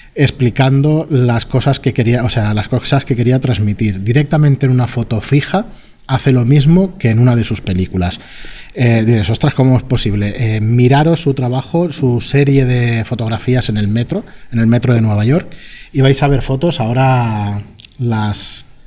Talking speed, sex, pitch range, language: 180 wpm, male, 115-140 Hz, Spanish